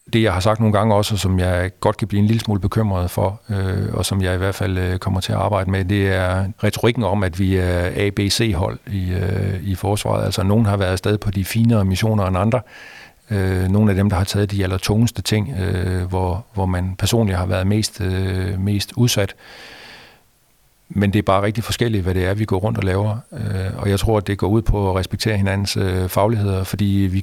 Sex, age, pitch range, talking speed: male, 50-69, 95-105 Hz, 210 wpm